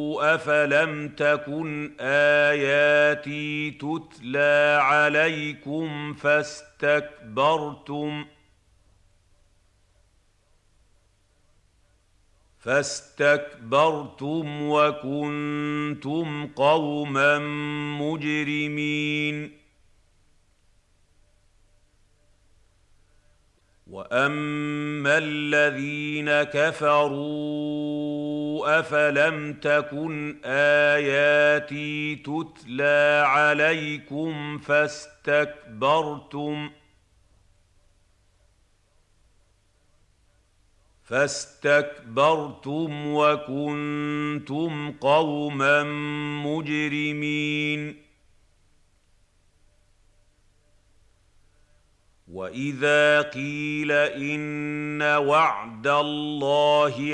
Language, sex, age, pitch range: Arabic, male, 50-69, 100-150 Hz